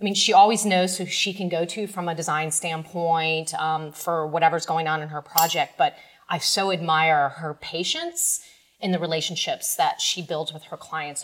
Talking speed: 200 wpm